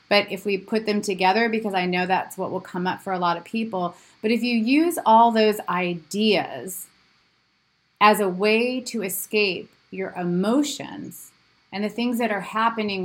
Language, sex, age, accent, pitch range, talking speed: English, female, 30-49, American, 190-230 Hz, 180 wpm